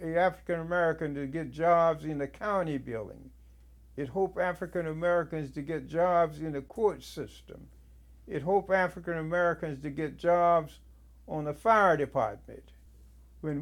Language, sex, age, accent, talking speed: English, male, 60-79, American, 130 wpm